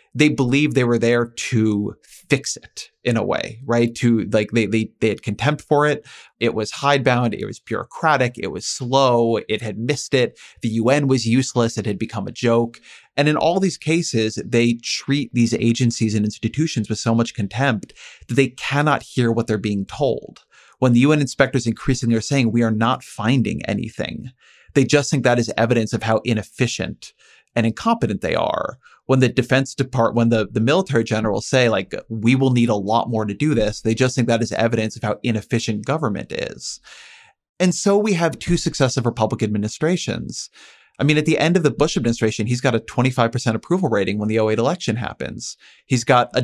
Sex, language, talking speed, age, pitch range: male, English, 200 wpm, 30-49, 110-135 Hz